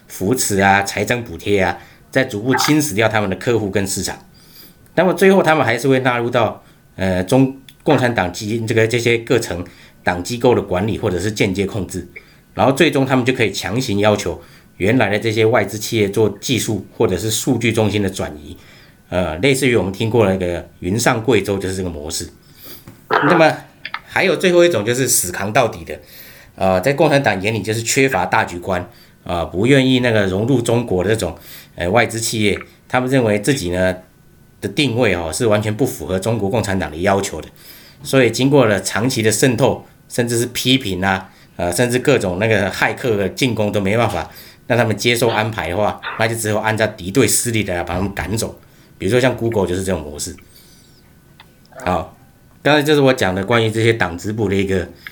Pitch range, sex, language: 95-125 Hz, male, Chinese